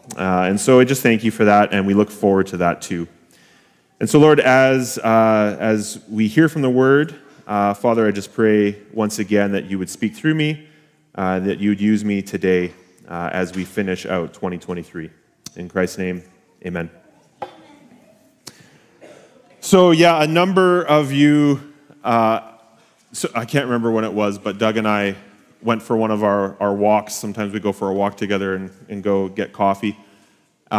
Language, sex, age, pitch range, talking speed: English, male, 30-49, 100-120 Hz, 180 wpm